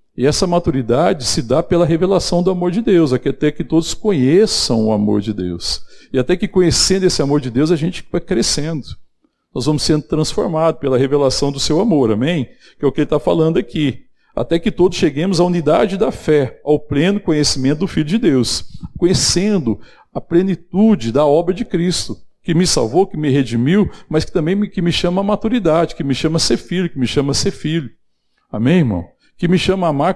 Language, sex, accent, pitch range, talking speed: Portuguese, male, Brazilian, 140-180 Hz, 205 wpm